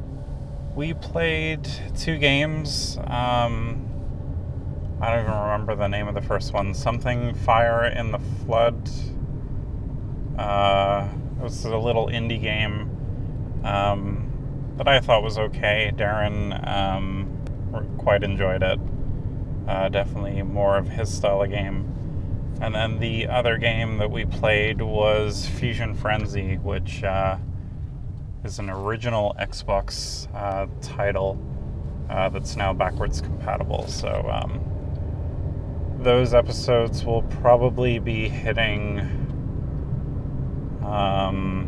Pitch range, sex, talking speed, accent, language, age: 95-120 Hz, male, 110 wpm, American, English, 30-49